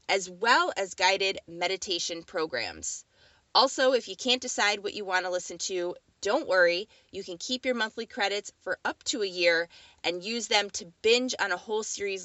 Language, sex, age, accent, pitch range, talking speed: English, female, 20-39, American, 175-210 Hz, 190 wpm